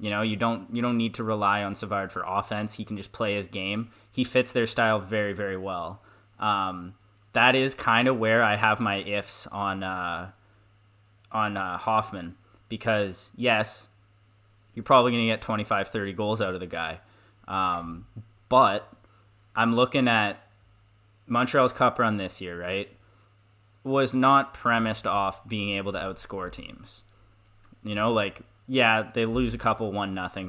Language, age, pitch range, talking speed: English, 20-39, 100-115 Hz, 165 wpm